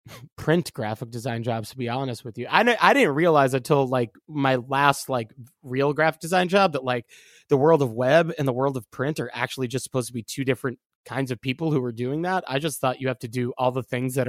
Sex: male